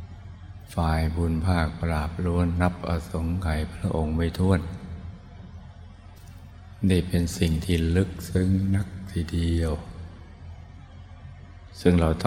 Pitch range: 80-90 Hz